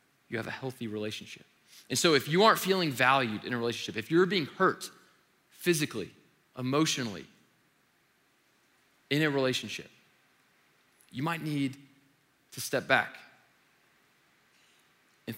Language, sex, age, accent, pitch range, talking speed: English, male, 20-39, American, 115-155 Hz, 120 wpm